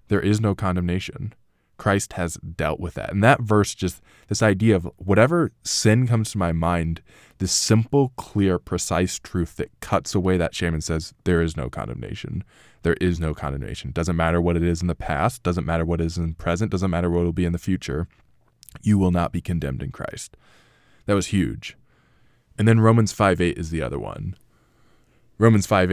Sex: male